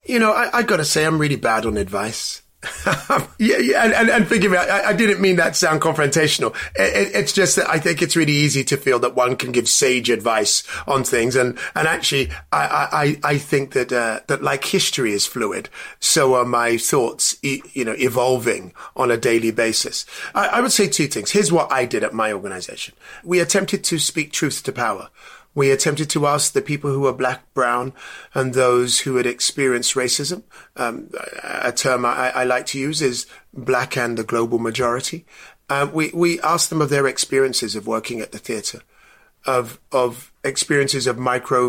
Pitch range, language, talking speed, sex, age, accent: 125-155 Hz, English, 205 wpm, male, 30-49, British